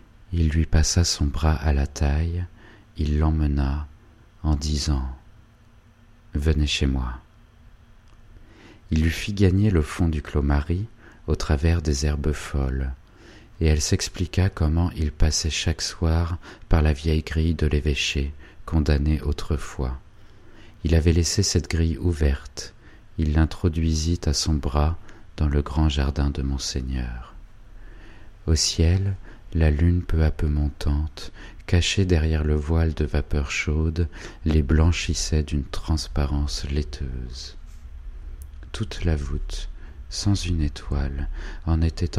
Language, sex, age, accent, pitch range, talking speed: French, male, 40-59, French, 75-90 Hz, 135 wpm